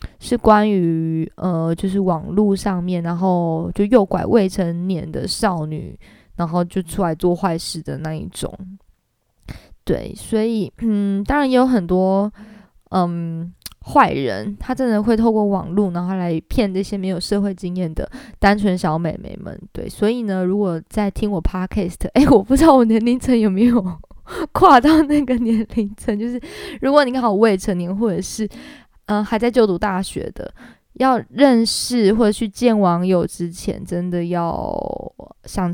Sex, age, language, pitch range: female, 20-39, Chinese, 180-240 Hz